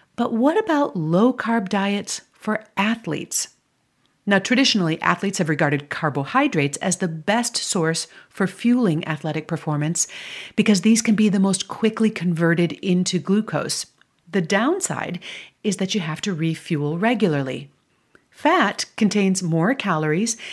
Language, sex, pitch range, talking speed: English, female, 170-230 Hz, 130 wpm